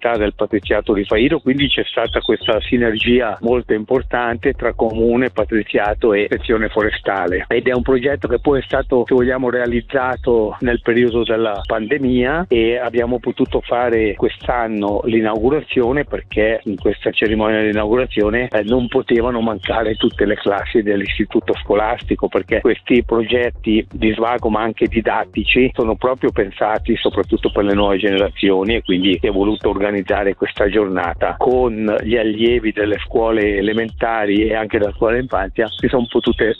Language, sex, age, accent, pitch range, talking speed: Italian, male, 50-69, native, 105-120 Hz, 150 wpm